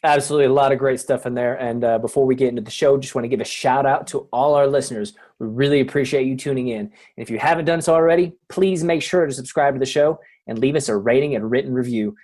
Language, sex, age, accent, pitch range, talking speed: English, male, 20-39, American, 125-150 Hz, 280 wpm